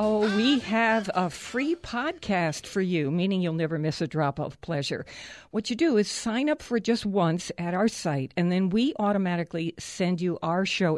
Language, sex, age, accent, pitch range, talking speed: English, female, 50-69, American, 160-205 Hz, 195 wpm